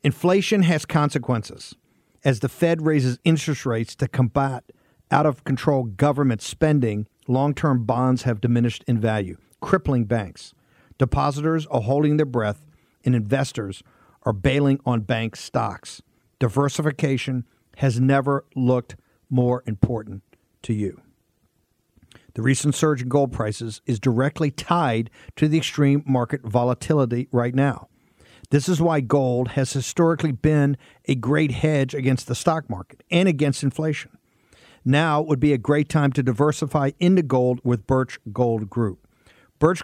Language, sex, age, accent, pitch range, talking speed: English, male, 50-69, American, 120-150 Hz, 135 wpm